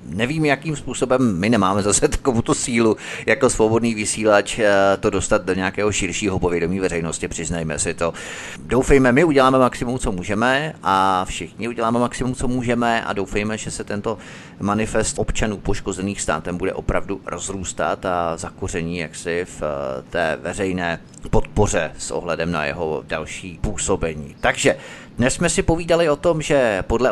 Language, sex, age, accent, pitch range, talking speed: Czech, male, 30-49, native, 95-125 Hz, 145 wpm